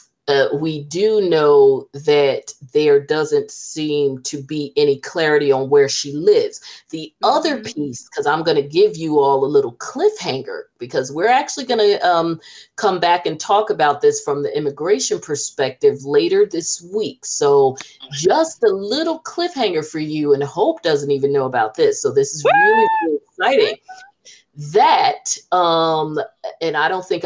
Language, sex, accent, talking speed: English, female, American, 160 wpm